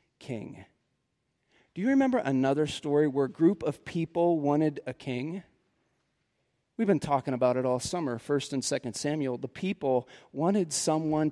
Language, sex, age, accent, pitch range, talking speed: English, male, 40-59, American, 145-230 Hz, 155 wpm